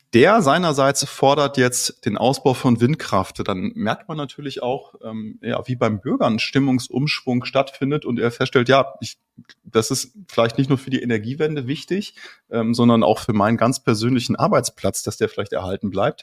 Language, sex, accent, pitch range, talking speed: German, male, German, 115-135 Hz, 175 wpm